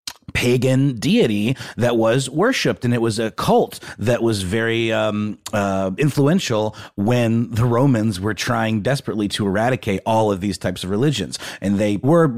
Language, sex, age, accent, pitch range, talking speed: English, male, 30-49, American, 95-125 Hz, 160 wpm